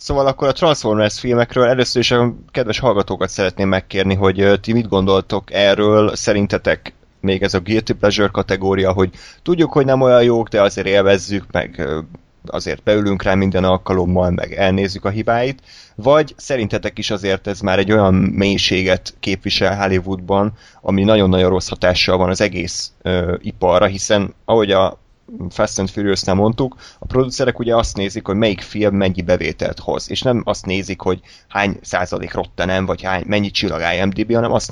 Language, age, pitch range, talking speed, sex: Hungarian, 20-39, 95-110 Hz, 160 wpm, male